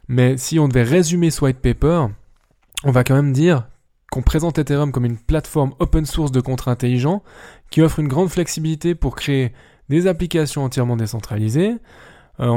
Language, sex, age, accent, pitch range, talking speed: French, male, 20-39, French, 120-155 Hz, 170 wpm